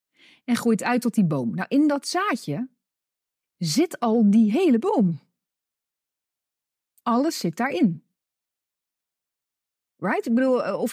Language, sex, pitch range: Dutch, female, 200-260 Hz